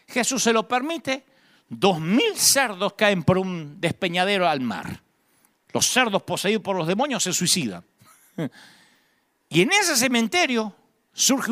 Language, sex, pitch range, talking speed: Spanish, male, 180-255 Hz, 135 wpm